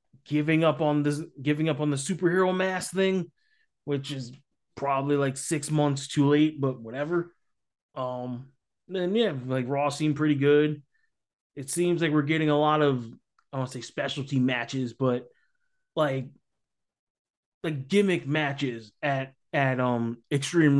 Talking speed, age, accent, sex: 155 wpm, 20-39, American, male